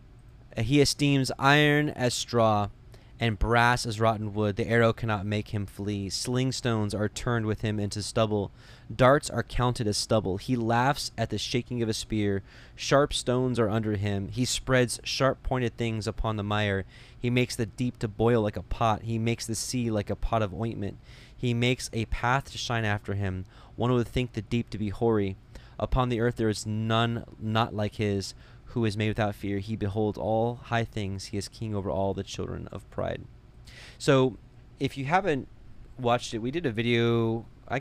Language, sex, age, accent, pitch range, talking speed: English, male, 20-39, American, 100-120 Hz, 195 wpm